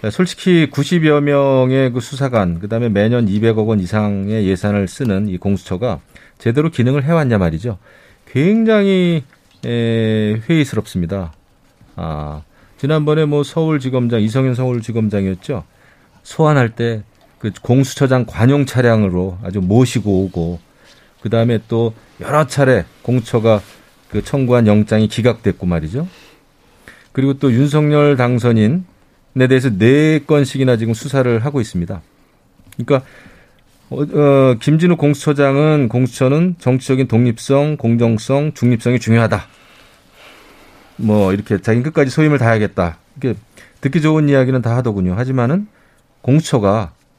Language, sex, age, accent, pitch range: Korean, male, 40-59, native, 105-140 Hz